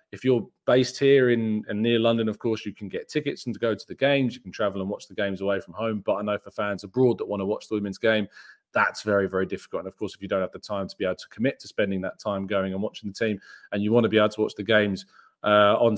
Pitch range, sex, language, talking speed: 100-120 Hz, male, English, 310 wpm